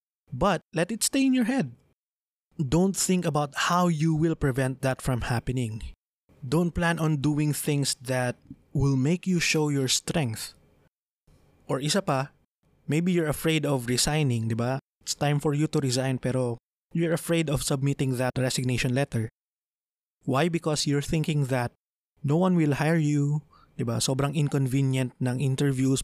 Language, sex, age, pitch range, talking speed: English, male, 20-39, 130-155 Hz, 160 wpm